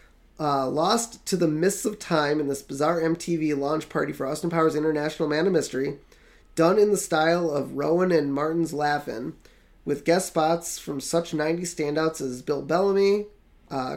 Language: English